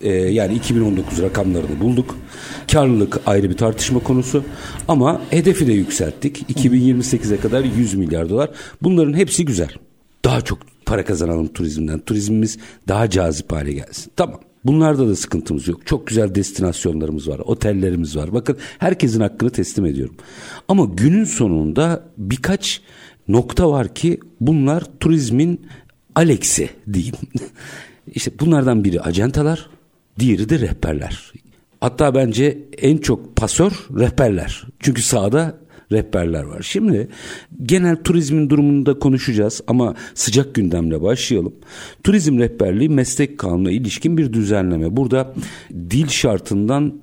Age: 60-79